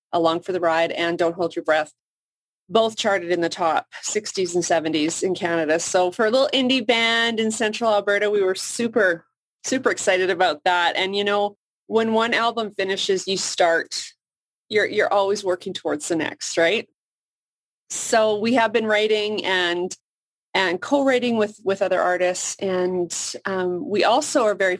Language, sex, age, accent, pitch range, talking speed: English, female, 30-49, American, 170-210 Hz, 170 wpm